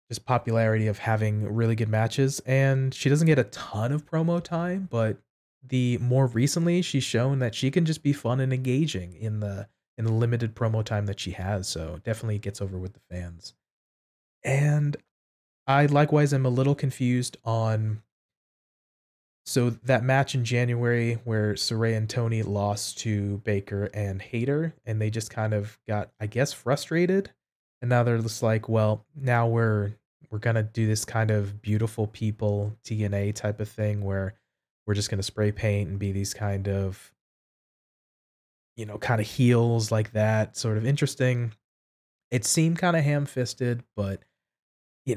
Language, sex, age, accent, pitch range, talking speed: English, male, 20-39, American, 105-130 Hz, 170 wpm